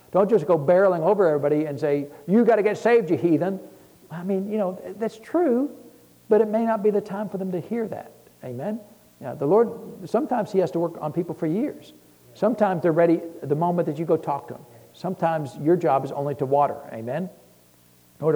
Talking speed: 220 wpm